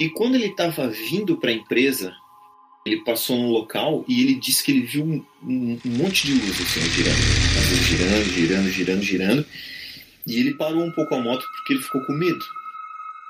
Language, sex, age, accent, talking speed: Portuguese, male, 30-49, Brazilian, 195 wpm